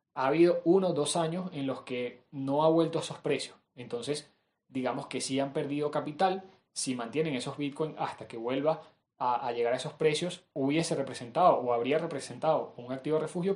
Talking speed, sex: 200 wpm, male